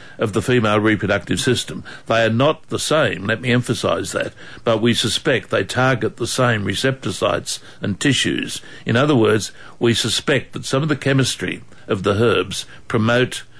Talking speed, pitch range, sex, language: 170 wpm, 110-125 Hz, male, English